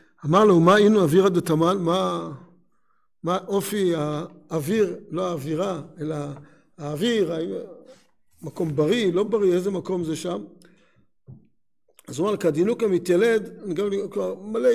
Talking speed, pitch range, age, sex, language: 115 wpm, 170-205 Hz, 50-69, male, Hebrew